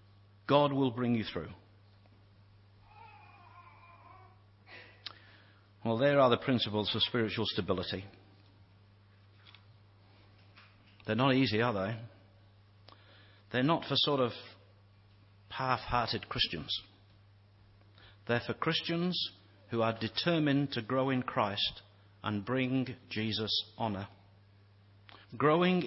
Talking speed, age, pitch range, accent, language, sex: 95 wpm, 50-69, 100-130 Hz, British, English, male